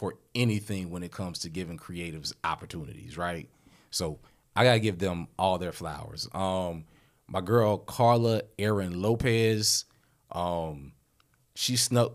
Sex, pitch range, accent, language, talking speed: male, 85-110 Hz, American, English, 140 wpm